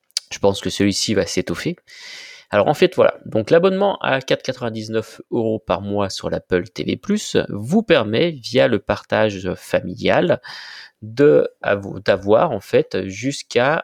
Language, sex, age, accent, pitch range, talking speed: French, male, 30-49, French, 100-135 Hz, 135 wpm